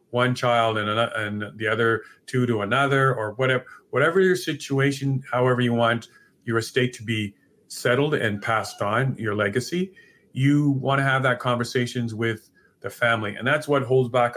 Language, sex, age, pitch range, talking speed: English, male, 40-59, 115-135 Hz, 175 wpm